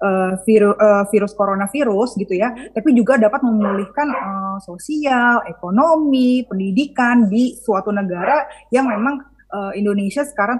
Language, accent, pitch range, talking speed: Indonesian, native, 200-250 Hz, 130 wpm